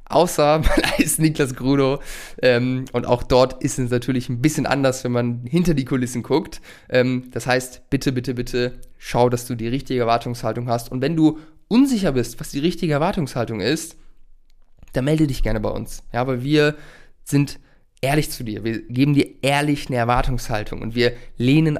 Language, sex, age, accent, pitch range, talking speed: German, male, 20-39, German, 115-135 Hz, 180 wpm